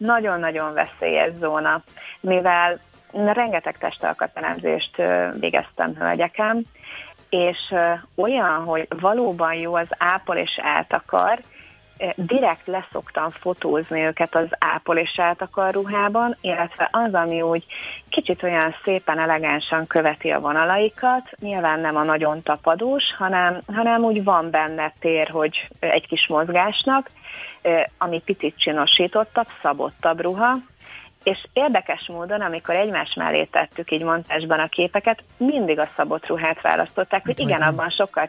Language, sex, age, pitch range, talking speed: Hungarian, female, 30-49, 160-205 Hz, 120 wpm